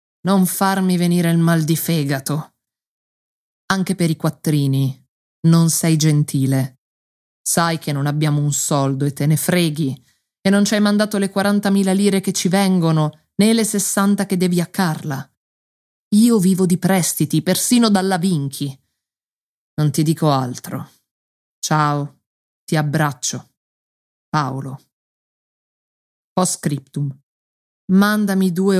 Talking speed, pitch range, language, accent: 125 wpm, 150-190 Hz, Italian, native